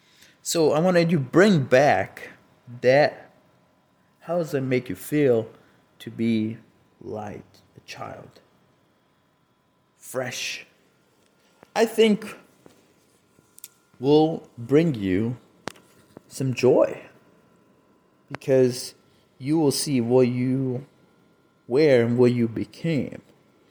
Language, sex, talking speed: English, male, 95 wpm